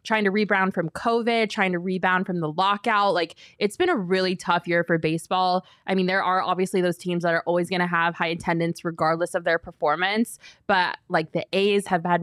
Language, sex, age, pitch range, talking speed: English, female, 20-39, 165-195 Hz, 220 wpm